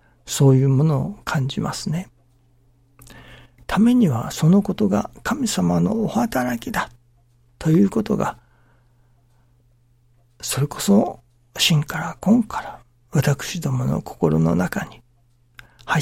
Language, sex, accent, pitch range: Japanese, male, native, 120-185 Hz